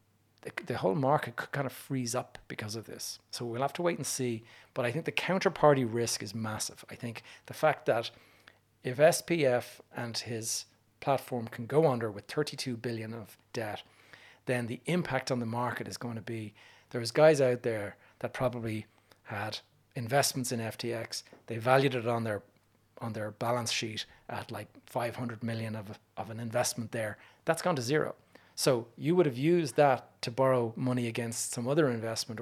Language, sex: English, male